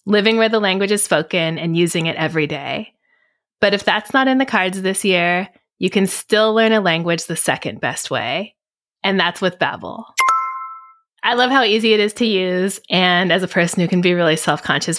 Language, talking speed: English, 205 wpm